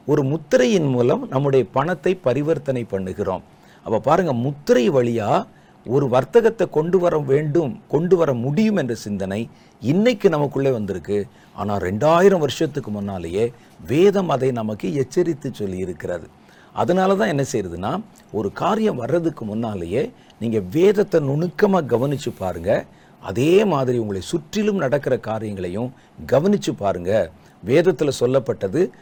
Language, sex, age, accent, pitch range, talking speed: Tamil, male, 50-69, native, 115-170 Hz, 120 wpm